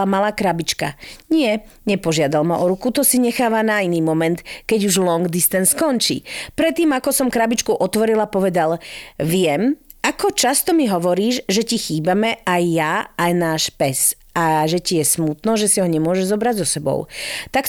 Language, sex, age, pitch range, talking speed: Slovak, female, 40-59, 180-240 Hz, 170 wpm